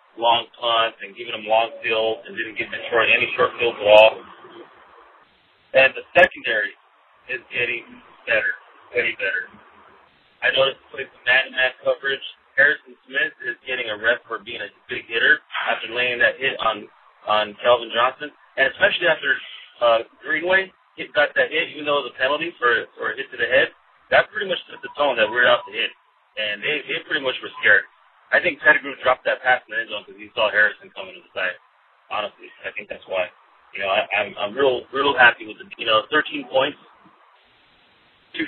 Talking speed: 200 wpm